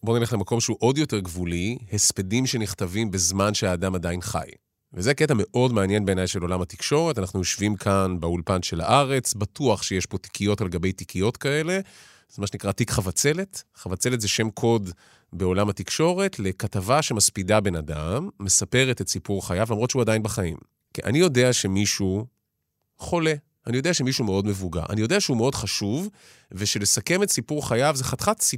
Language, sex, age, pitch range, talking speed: Hebrew, male, 30-49, 100-130 Hz, 155 wpm